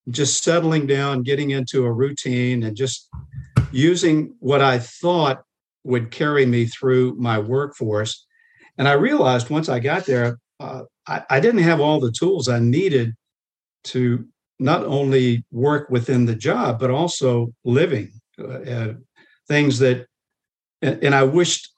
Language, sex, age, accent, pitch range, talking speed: English, male, 50-69, American, 120-145 Hz, 150 wpm